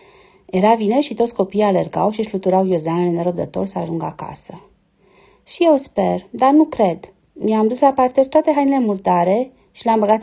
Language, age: Romanian, 30-49